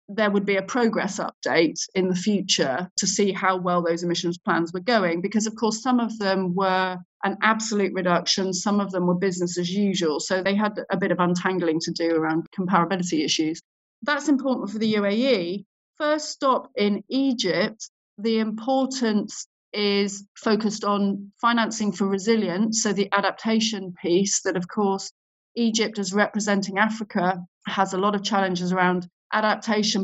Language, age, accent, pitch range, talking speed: English, 30-49, British, 180-215 Hz, 165 wpm